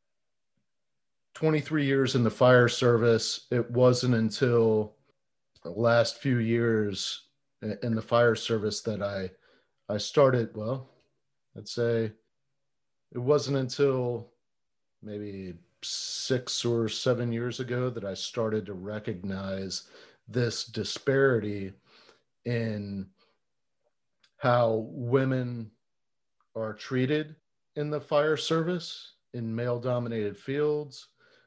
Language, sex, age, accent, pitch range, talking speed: English, male, 40-59, American, 110-140 Hz, 100 wpm